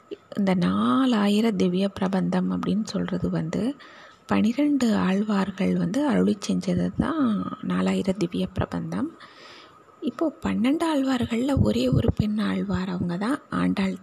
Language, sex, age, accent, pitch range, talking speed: Tamil, female, 30-49, native, 200-260 Hz, 105 wpm